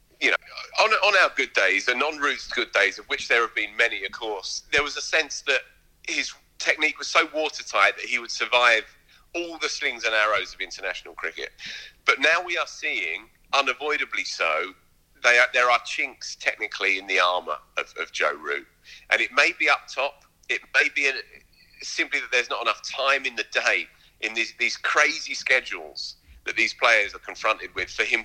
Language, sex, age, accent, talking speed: English, male, 30-49, British, 190 wpm